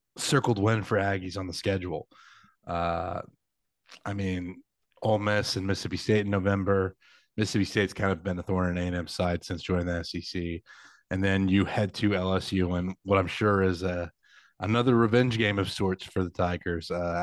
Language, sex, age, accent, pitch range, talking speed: English, male, 30-49, American, 90-105 Hz, 180 wpm